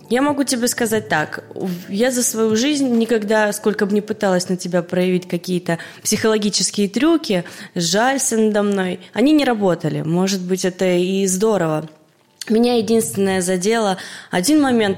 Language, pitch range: Russian, 185-220 Hz